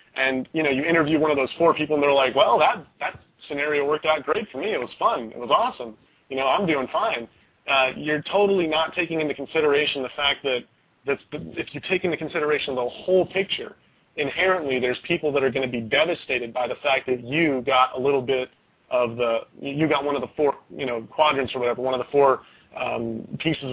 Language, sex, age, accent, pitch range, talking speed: English, male, 30-49, American, 130-150 Hz, 225 wpm